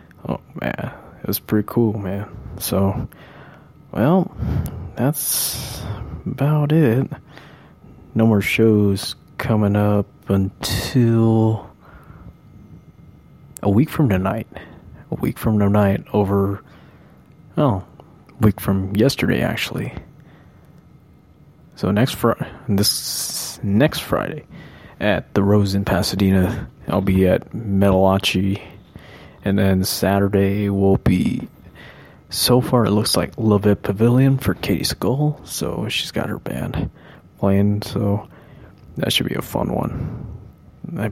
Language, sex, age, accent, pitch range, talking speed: English, male, 20-39, American, 95-120 Hz, 110 wpm